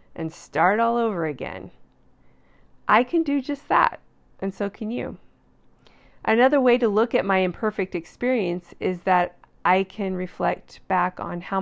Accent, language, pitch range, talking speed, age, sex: American, English, 170-230 Hz, 155 wpm, 40-59, female